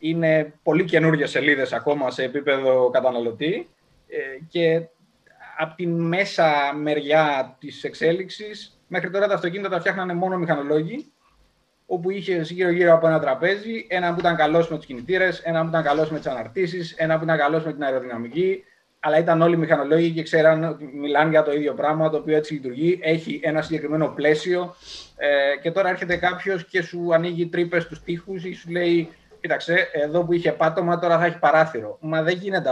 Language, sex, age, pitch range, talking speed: Greek, male, 20-39, 140-170 Hz, 175 wpm